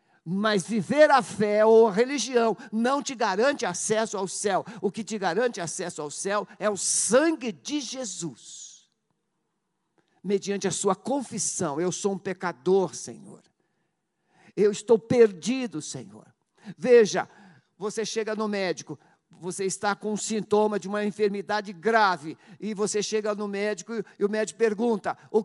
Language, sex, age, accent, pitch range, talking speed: Portuguese, male, 50-69, Brazilian, 195-270 Hz, 145 wpm